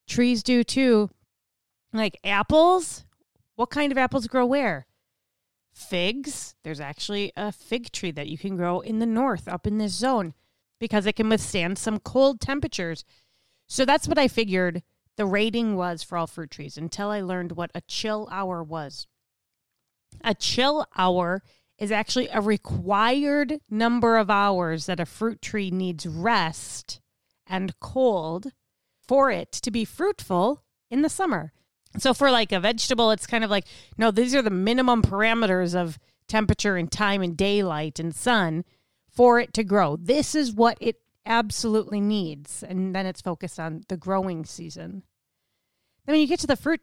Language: English